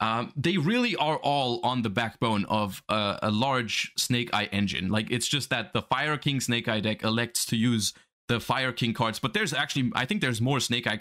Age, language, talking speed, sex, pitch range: 20-39, English, 225 wpm, male, 110-140 Hz